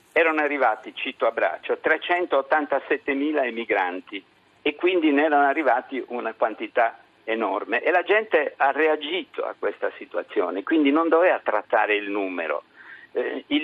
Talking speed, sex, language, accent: 140 wpm, male, Italian, native